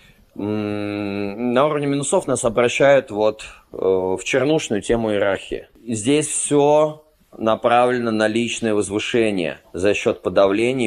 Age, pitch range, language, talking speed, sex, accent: 30-49, 100-125 Hz, Russian, 100 wpm, male, native